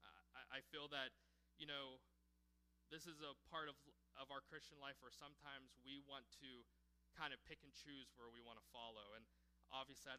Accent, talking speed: American, 190 wpm